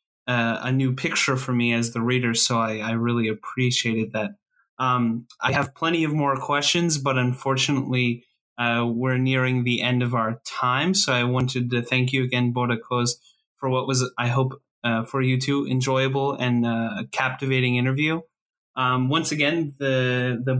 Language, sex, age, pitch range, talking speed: English, male, 20-39, 120-140 Hz, 170 wpm